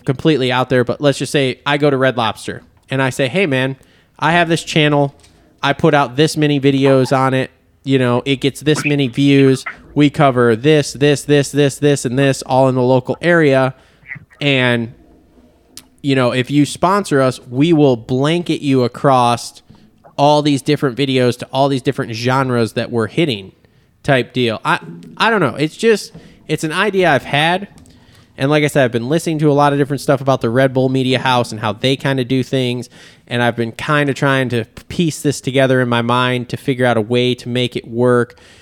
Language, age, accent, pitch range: English, 20-39, American, 120-145 Hz